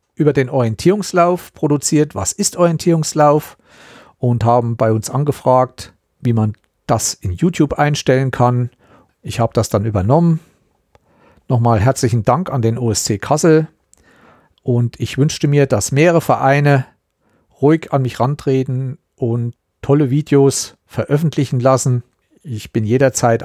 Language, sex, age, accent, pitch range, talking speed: German, male, 50-69, German, 110-140 Hz, 130 wpm